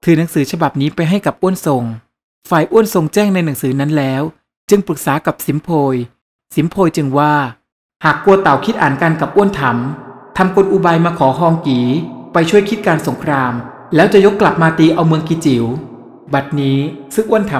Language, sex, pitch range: Thai, male, 135-180 Hz